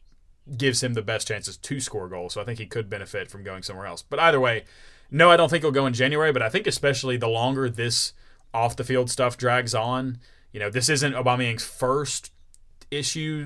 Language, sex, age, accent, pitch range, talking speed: English, male, 20-39, American, 105-125 Hz, 210 wpm